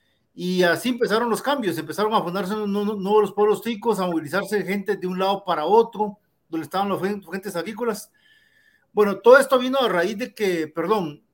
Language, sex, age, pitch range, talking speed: Spanish, male, 40-59, 165-210 Hz, 185 wpm